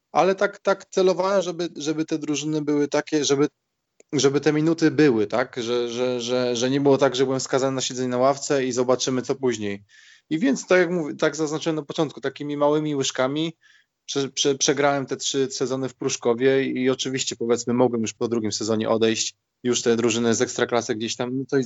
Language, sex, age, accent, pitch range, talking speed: Polish, male, 20-39, native, 110-135 Hz, 195 wpm